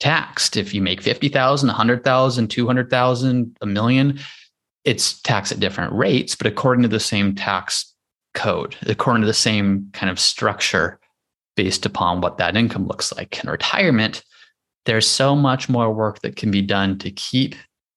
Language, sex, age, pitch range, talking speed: English, male, 20-39, 100-125 Hz, 160 wpm